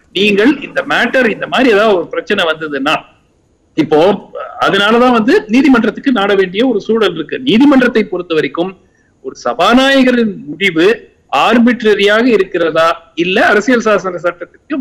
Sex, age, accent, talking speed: male, 50-69, native, 60 wpm